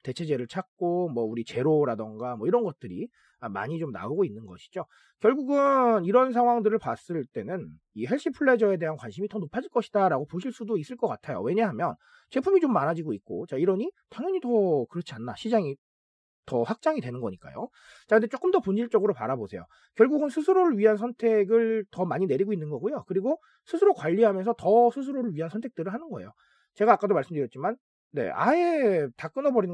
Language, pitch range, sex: Korean, 150-240 Hz, male